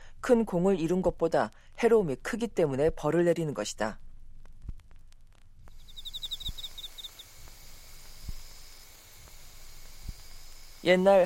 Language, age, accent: Korean, 40-59, native